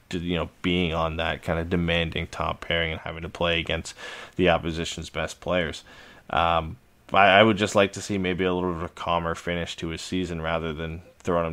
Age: 20-39